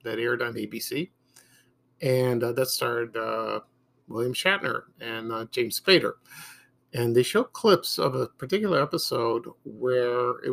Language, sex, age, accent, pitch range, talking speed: English, male, 50-69, American, 120-135 Hz, 140 wpm